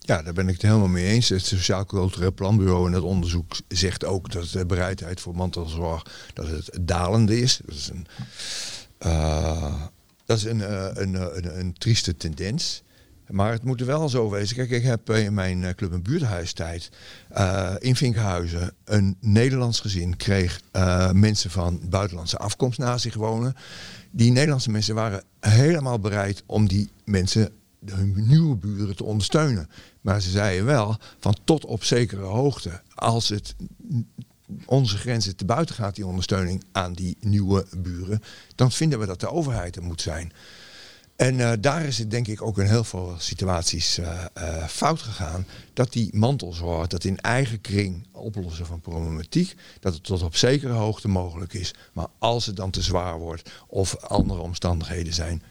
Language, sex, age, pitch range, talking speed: Dutch, male, 60-79, 90-115 Hz, 175 wpm